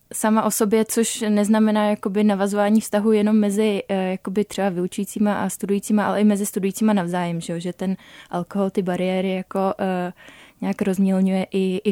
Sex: female